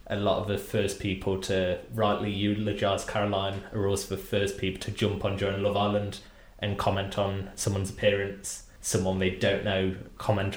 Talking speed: 175 wpm